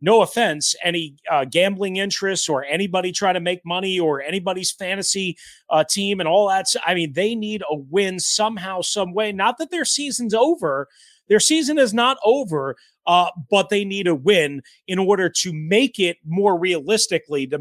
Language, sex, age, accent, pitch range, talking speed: English, male, 30-49, American, 170-210 Hz, 185 wpm